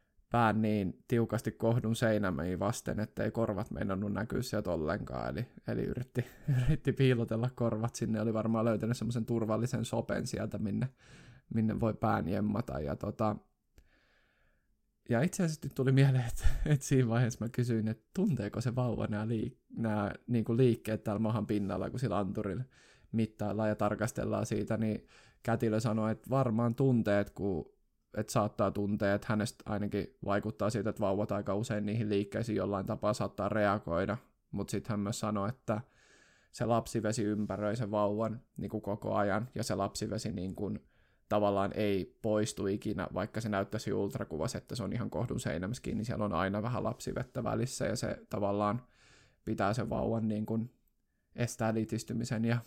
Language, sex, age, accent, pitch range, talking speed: Finnish, male, 20-39, native, 105-115 Hz, 160 wpm